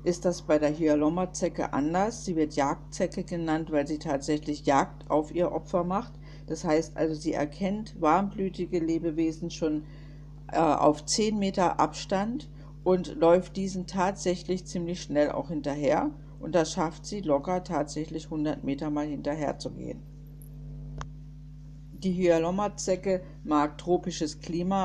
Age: 50-69